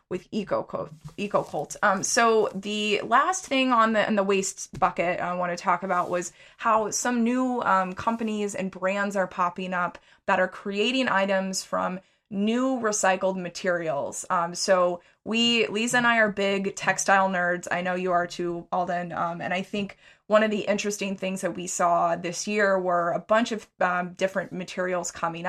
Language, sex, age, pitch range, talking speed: English, female, 20-39, 180-210 Hz, 185 wpm